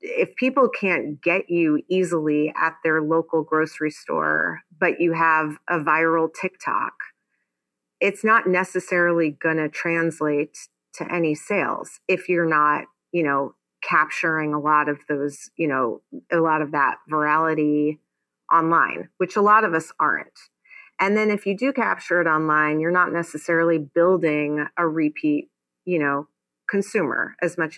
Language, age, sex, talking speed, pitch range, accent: English, 30-49, female, 150 wpm, 150-180 Hz, American